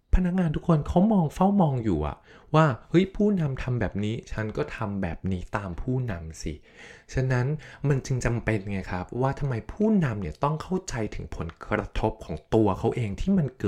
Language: Thai